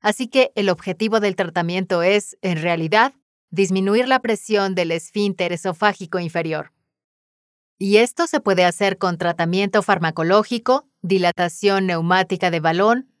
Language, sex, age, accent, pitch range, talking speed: Spanish, female, 30-49, Mexican, 175-220 Hz, 125 wpm